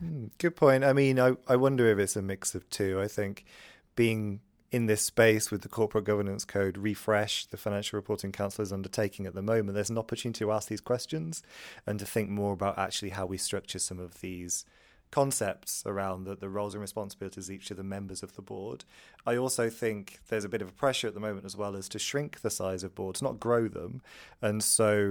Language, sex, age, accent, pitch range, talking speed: English, male, 20-39, British, 100-110 Hz, 220 wpm